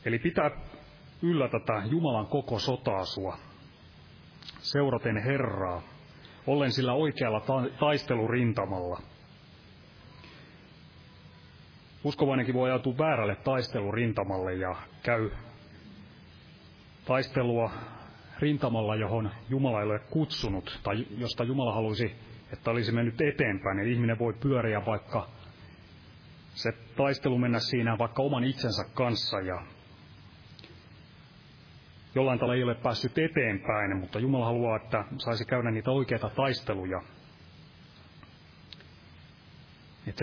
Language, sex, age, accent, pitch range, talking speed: Finnish, male, 30-49, native, 105-130 Hz, 100 wpm